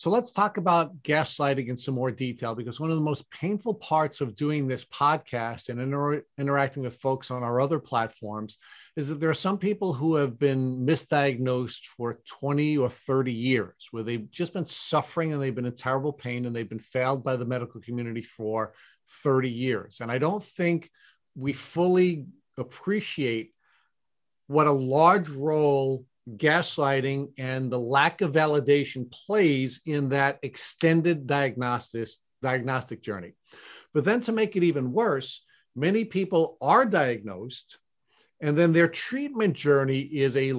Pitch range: 125-155 Hz